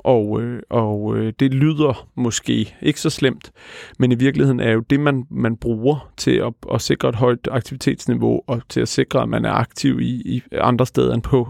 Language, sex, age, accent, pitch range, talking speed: Danish, male, 30-49, native, 115-135 Hz, 210 wpm